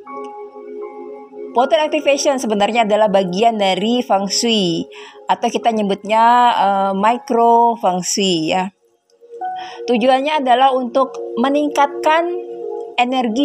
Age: 20-39